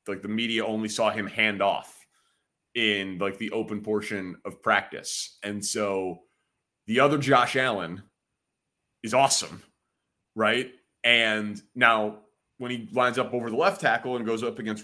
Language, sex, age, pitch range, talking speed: English, male, 30-49, 100-120 Hz, 155 wpm